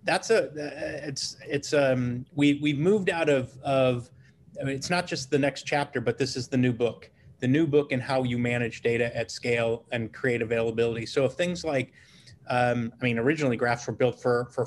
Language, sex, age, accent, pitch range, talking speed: English, male, 30-49, American, 120-145 Hz, 210 wpm